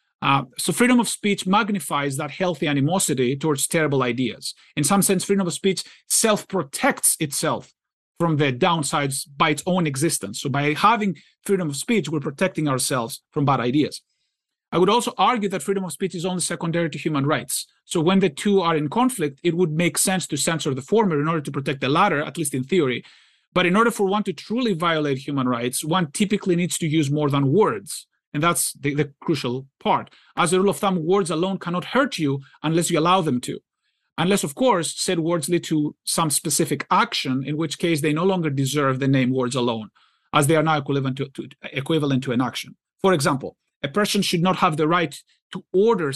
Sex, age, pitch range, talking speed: male, 40-59, 145-185 Hz, 205 wpm